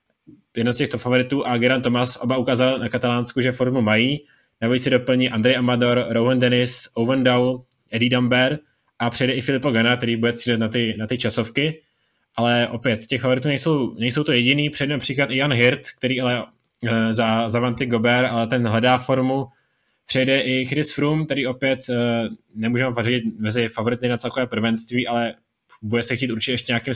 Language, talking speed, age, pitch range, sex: Czech, 185 wpm, 20-39, 115-130 Hz, male